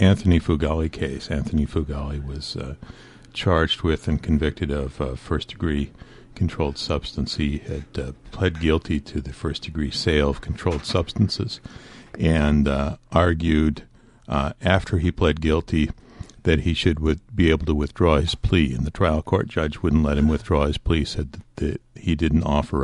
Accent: American